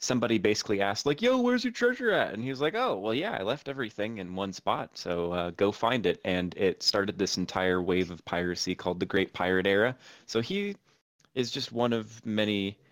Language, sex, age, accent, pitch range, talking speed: English, male, 30-49, American, 90-110 Hz, 220 wpm